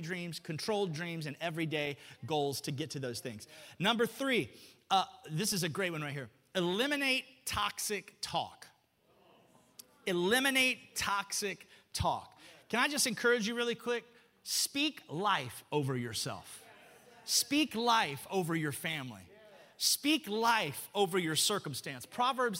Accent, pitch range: American, 165-255 Hz